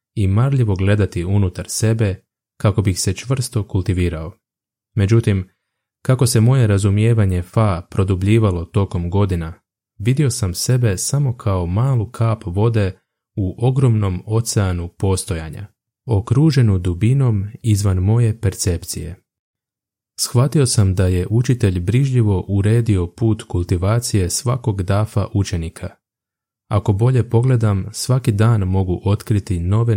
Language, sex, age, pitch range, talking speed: Croatian, male, 20-39, 95-115 Hz, 110 wpm